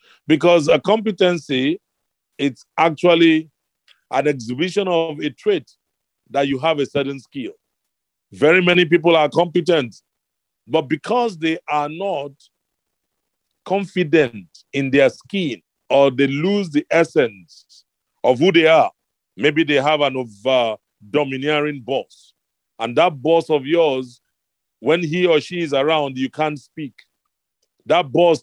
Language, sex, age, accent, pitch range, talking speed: English, male, 40-59, Nigerian, 140-170 Hz, 130 wpm